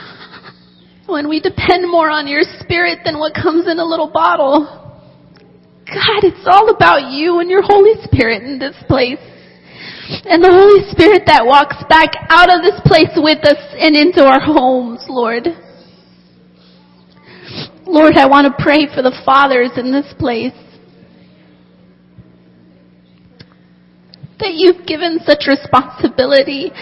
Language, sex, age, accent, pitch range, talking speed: English, female, 30-49, American, 235-345 Hz, 135 wpm